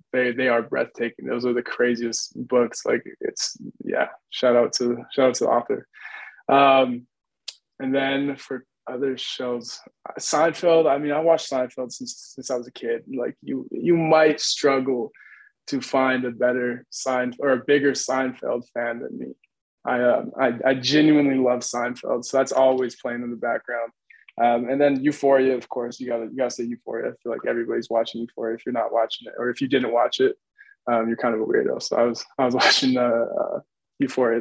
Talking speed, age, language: 195 wpm, 20-39, English